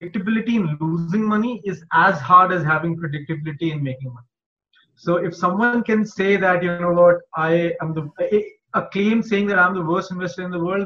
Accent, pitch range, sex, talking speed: Indian, 155-190 Hz, male, 205 wpm